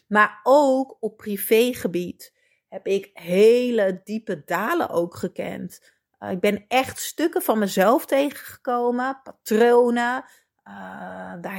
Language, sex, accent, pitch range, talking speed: Dutch, female, Dutch, 190-270 Hz, 110 wpm